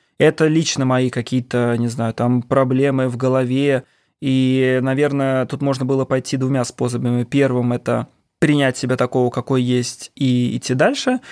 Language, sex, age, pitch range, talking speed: Russian, male, 20-39, 125-145 Hz, 150 wpm